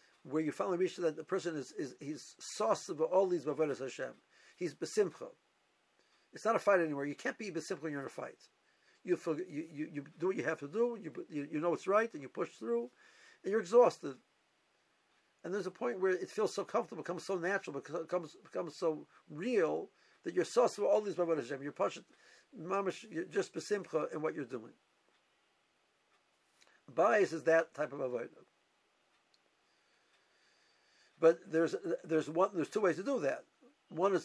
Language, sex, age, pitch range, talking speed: English, male, 60-79, 160-205 Hz, 185 wpm